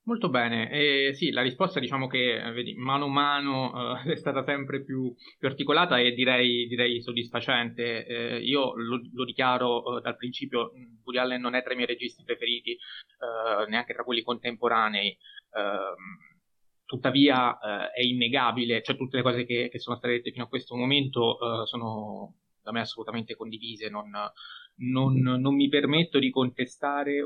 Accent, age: native, 20-39